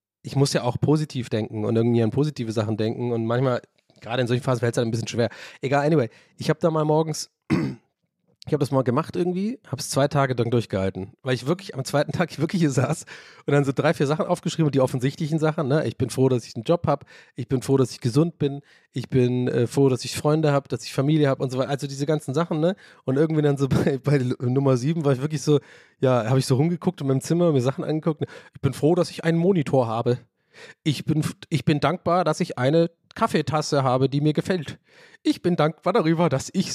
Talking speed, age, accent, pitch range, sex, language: 245 wpm, 30-49, German, 120-155 Hz, male, German